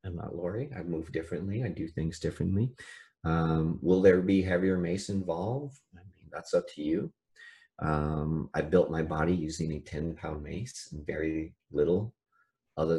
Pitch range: 80-125 Hz